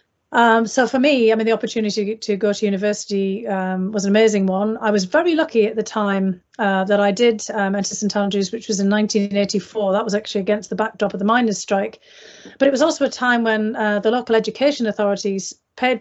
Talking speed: 225 wpm